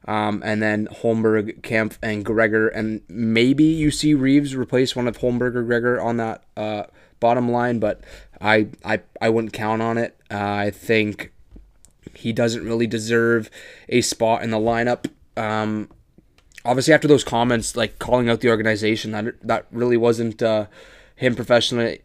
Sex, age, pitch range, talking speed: male, 20-39, 110-120 Hz, 165 wpm